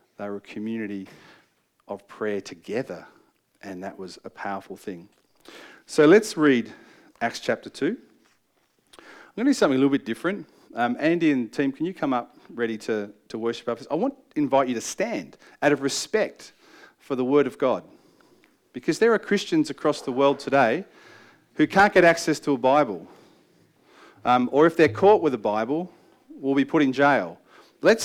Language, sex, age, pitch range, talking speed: English, male, 40-59, 130-200 Hz, 180 wpm